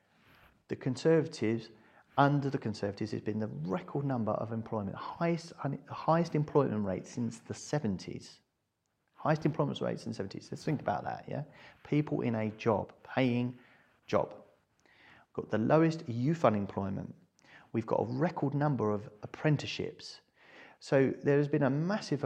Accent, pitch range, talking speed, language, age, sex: British, 110-145 Hz, 150 wpm, English, 40-59, male